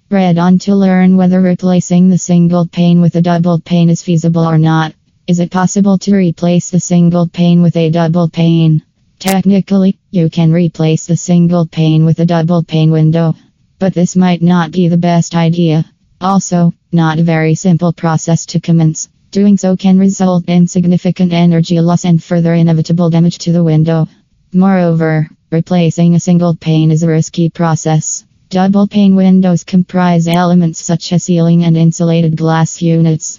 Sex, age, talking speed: female, 20-39, 165 wpm